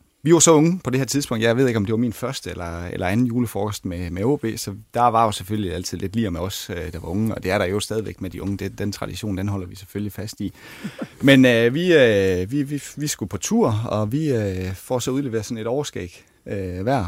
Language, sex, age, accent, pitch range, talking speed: Danish, male, 30-49, native, 95-125 Hz, 260 wpm